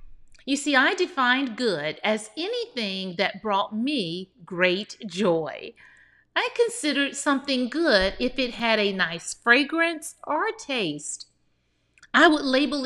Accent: American